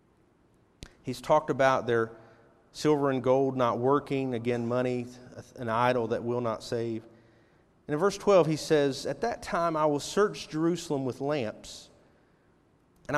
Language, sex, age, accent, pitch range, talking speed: English, male, 40-59, American, 135-195 Hz, 150 wpm